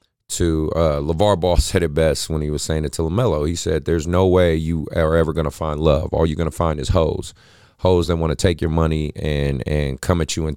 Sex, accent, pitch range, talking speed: male, American, 75-90 Hz, 245 wpm